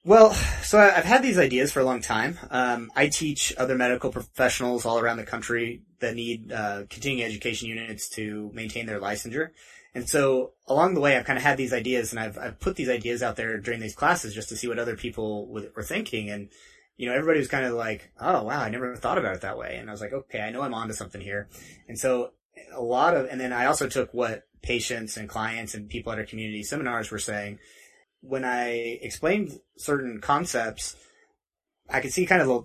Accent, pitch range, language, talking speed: American, 115-135 Hz, English, 220 wpm